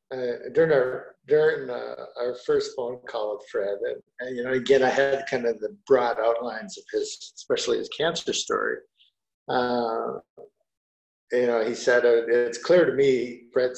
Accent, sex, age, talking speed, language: American, male, 50-69, 155 wpm, English